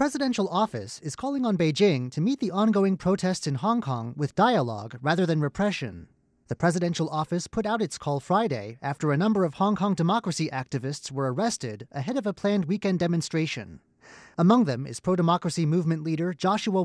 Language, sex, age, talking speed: English, male, 30-49, 180 wpm